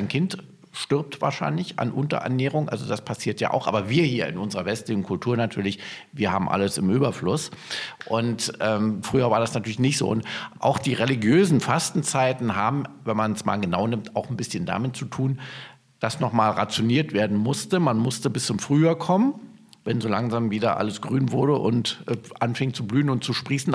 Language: German